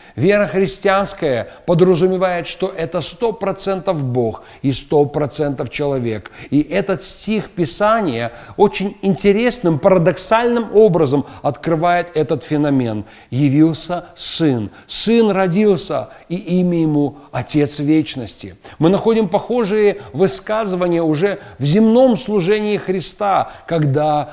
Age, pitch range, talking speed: 40-59, 140-190 Hz, 100 wpm